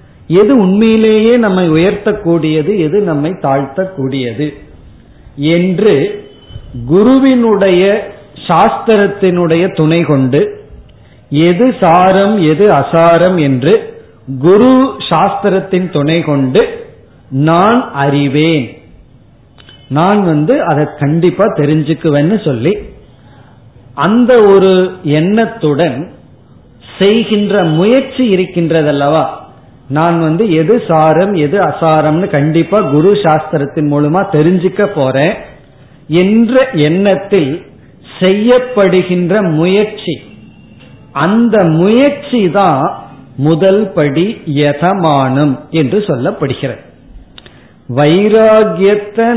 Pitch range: 145-200 Hz